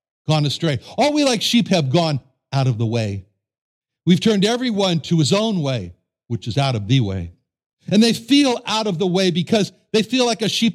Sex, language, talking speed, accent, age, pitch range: male, English, 210 wpm, American, 60-79, 160-220 Hz